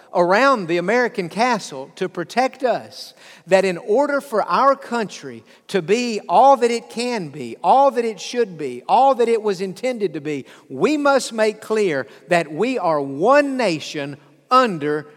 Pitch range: 160-235 Hz